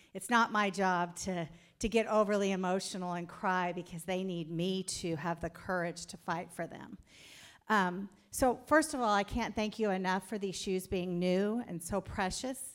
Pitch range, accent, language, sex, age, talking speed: 190-230 Hz, American, English, female, 50-69, 195 wpm